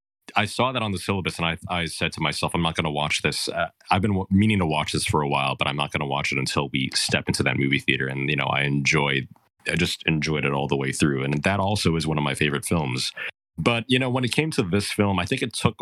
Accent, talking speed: American, 295 wpm